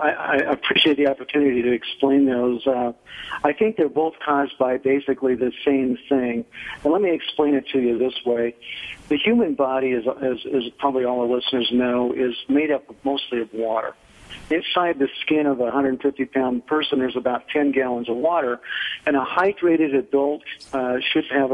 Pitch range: 125-150 Hz